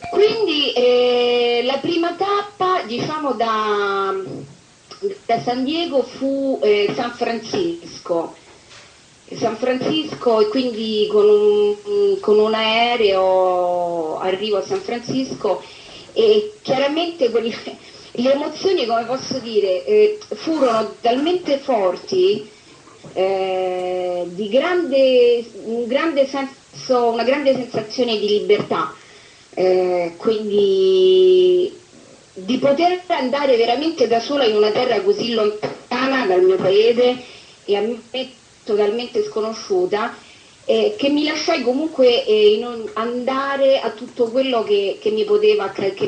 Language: Italian